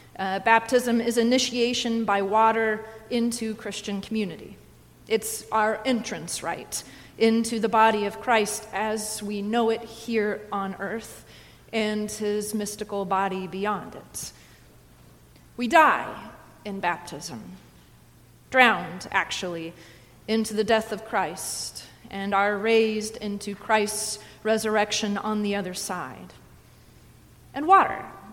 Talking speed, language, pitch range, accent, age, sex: 115 wpm, English, 200-235 Hz, American, 30-49, female